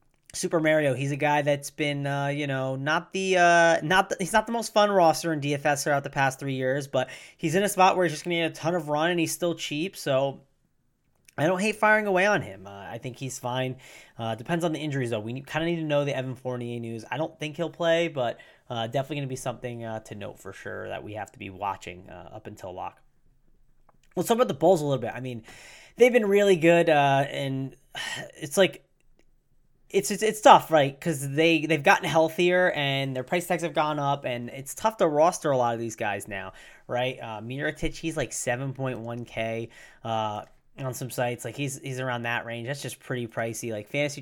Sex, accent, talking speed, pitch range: male, American, 230 wpm, 125-165 Hz